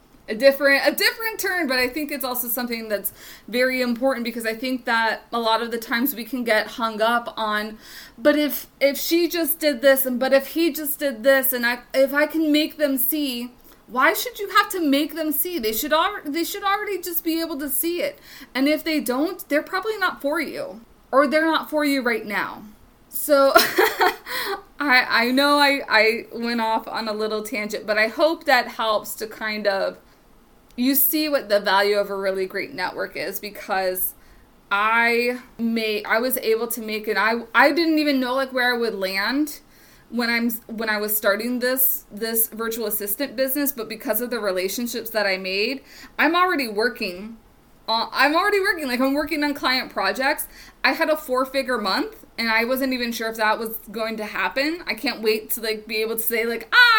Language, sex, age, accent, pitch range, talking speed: English, female, 20-39, American, 225-300 Hz, 205 wpm